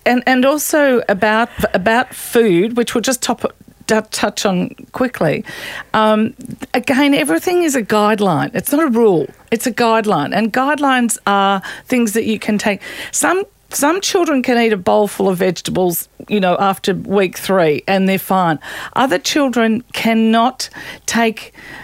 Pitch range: 200-245 Hz